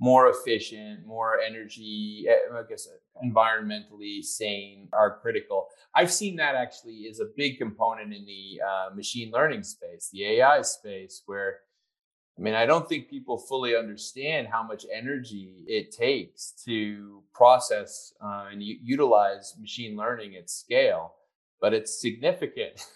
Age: 30-49